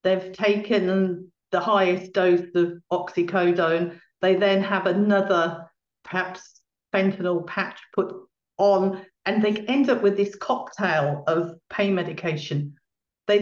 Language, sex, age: English, female, 50-69